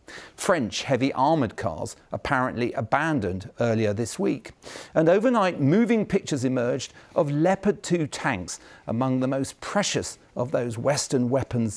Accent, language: British, English